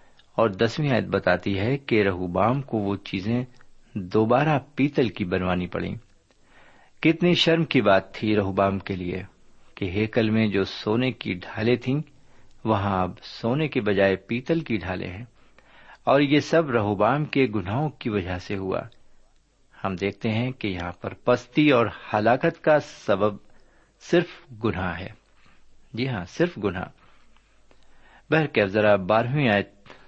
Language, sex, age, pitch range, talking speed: Urdu, male, 60-79, 100-130 Hz, 140 wpm